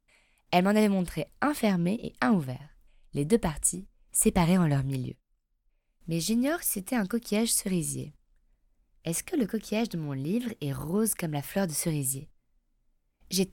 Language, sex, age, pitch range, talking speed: French, female, 20-39, 145-205 Hz, 170 wpm